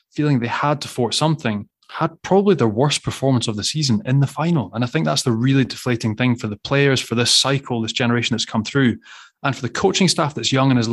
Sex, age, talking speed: male, 20-39, 245 wpm